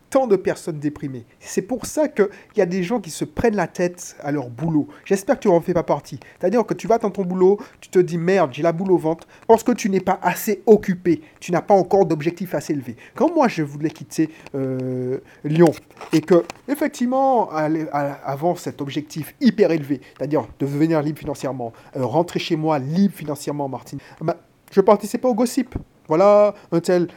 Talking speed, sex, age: 215 wpm, male, 30-49